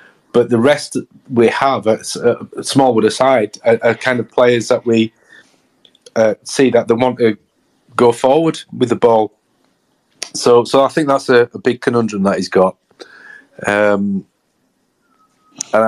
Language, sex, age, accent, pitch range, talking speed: English, male, 40-59, British, 105-125 Hz, 150 wpm